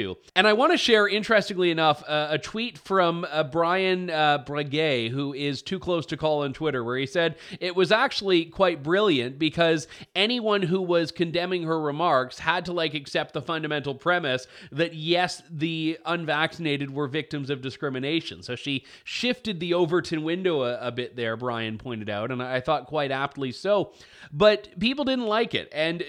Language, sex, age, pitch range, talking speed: English, male, 30-49, 145-185 Hz, 180 wpm